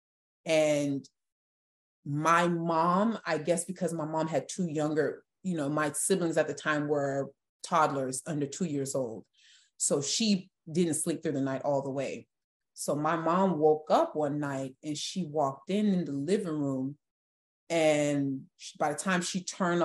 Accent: American